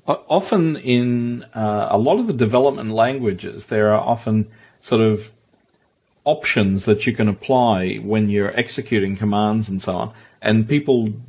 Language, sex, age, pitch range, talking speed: English, male, 40-59, 100-115 Hz, 150 wpm